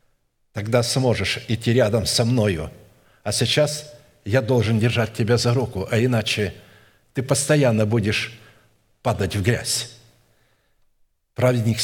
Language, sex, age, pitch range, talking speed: Russian, male, 60-79, 110-130 Hz, 115 wpm